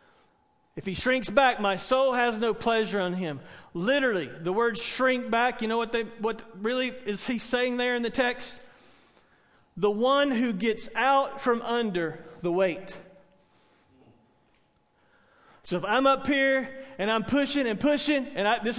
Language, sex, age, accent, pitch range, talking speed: English, male, 40-59, American, 205-260 Hz, 165 wpm